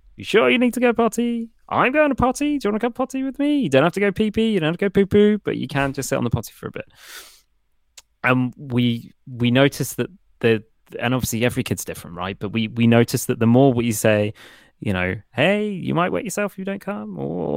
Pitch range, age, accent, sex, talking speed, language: 105-160 Hz, 20-39, British, male, 270 wpm, English